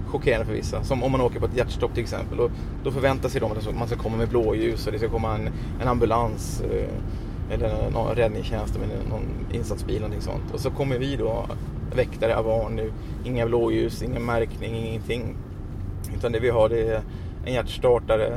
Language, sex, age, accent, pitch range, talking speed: Swedish, male, 30-49, native, 110-125 Hz, 200 wpm